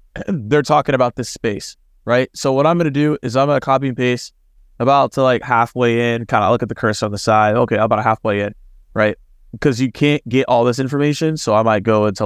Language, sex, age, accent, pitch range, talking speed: English, male, 20-39, American, 105-140 Hz, 245 wpm